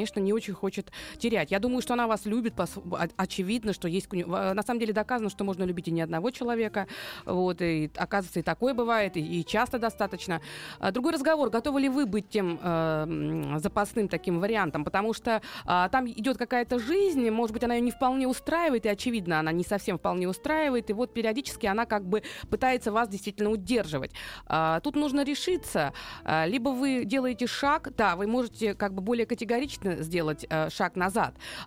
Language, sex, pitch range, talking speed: Russian, female, 190-255 Hz, 180 wpm